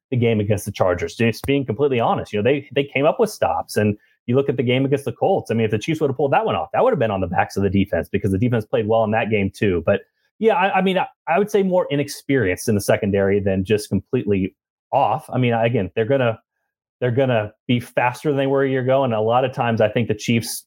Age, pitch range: 30-49, 110-140 Hz